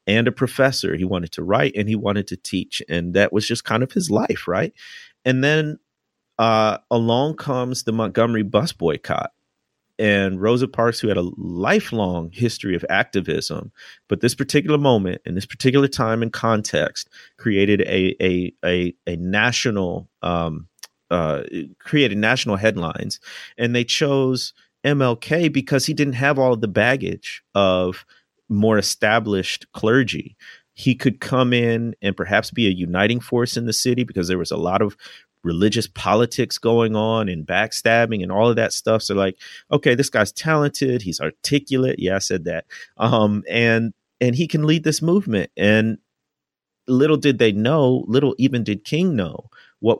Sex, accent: male, American